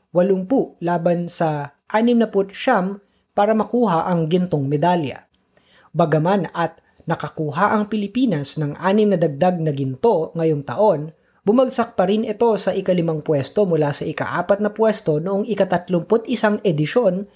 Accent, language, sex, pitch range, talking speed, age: native, Filipino, female, 145-200 Hz, 130 wpm, 20-39